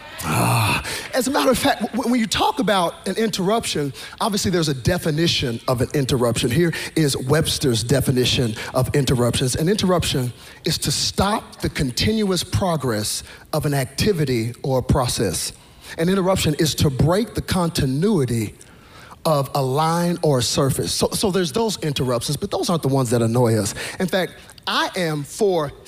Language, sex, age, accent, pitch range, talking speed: English, male, 40-59, American, 130-185 Hz, 160 wpm